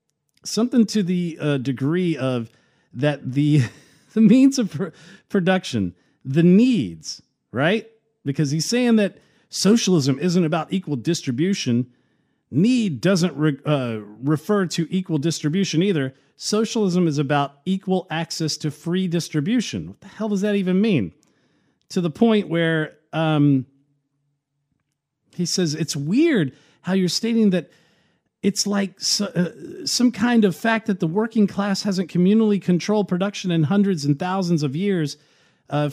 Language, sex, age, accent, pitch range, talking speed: English, male, 40-59, American, 145-190 Hz, 140 wpm